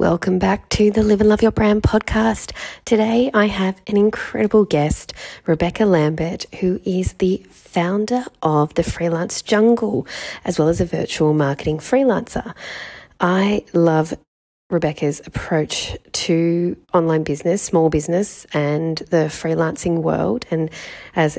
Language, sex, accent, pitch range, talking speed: English, female, Australian, 160-185 Hz, 135 wpm